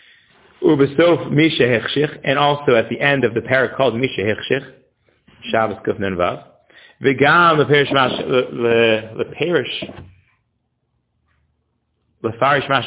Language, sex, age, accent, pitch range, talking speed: English, male, 40-59, American, 140-175 Hz, 90 wpm